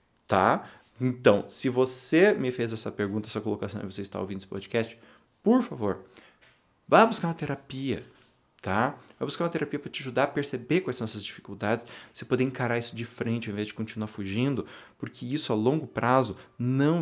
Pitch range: 110-130 Hz